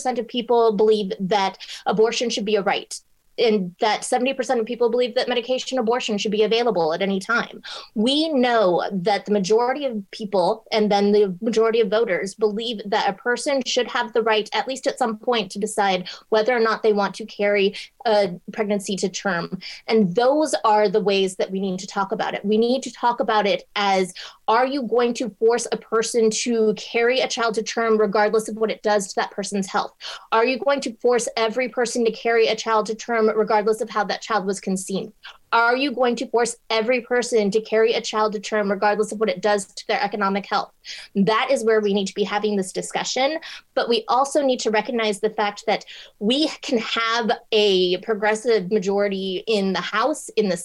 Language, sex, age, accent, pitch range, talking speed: English, female, 20-39, American, 205-240 Hz, 210 wpm